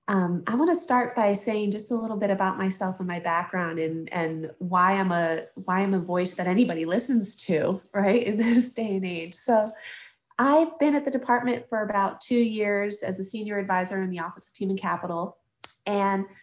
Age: 30-49